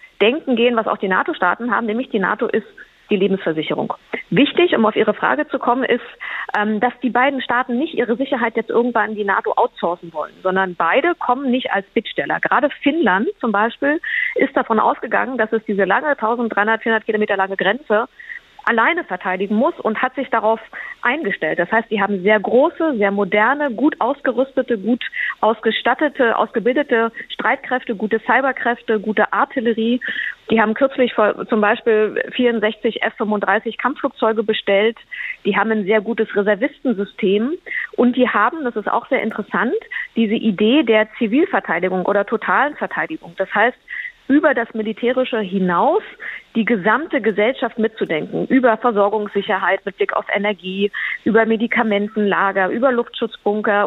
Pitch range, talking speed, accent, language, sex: 210-255 Hz, 145 wpm, German, German, female